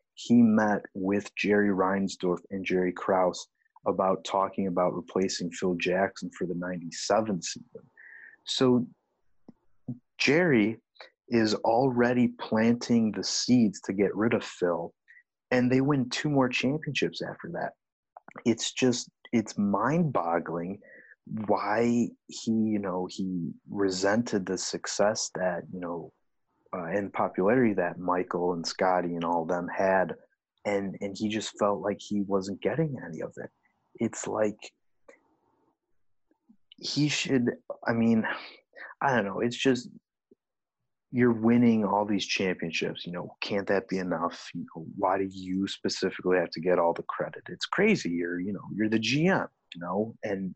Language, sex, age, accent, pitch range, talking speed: English, male, 30-49, American, 95-120 Hz, 145 wpm